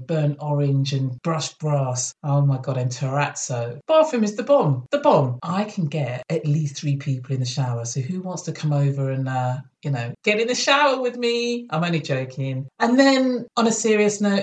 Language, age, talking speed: English, 40-59, 210 wpm